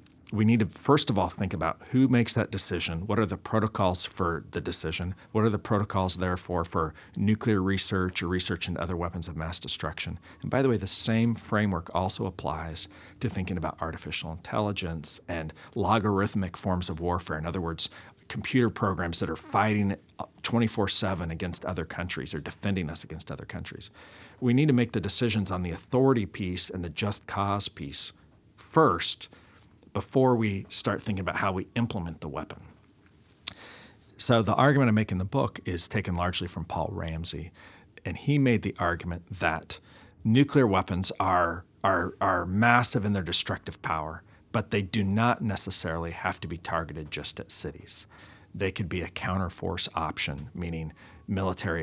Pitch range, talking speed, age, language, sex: 85-105 Hz, 170 wpm, 40-59, English, male